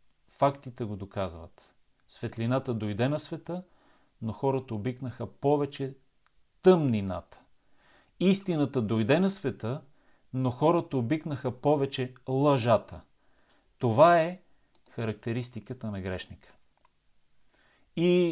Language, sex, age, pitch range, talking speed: Bulgarian, male, 40-59, 105-140 Hz, 90 wpm